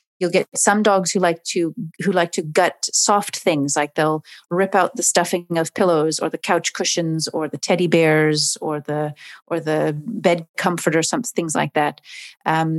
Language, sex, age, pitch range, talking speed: English, female, 30-49, 170-210 Hz, 190 wpm